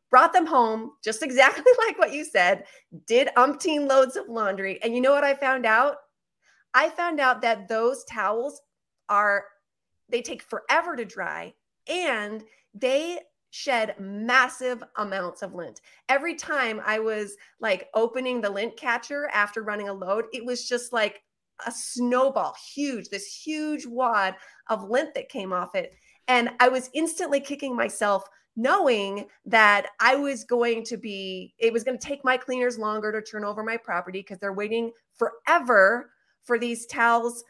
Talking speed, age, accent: 165 wpm, 30-49, American